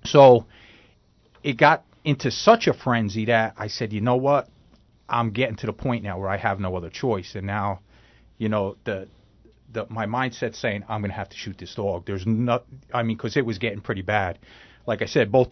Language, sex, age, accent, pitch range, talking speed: English, male, 40-59, American, 105-125 Hz, 215 wpm